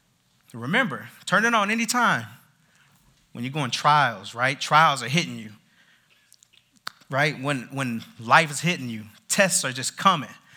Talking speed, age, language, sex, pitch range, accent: 150 wpm, 30-49, English, male, 125-165 Hz, American